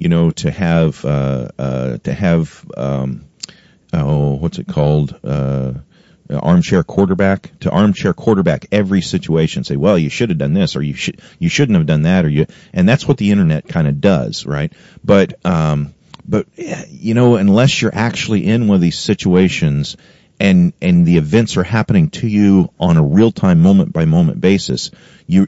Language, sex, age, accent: English, male, 40-59, American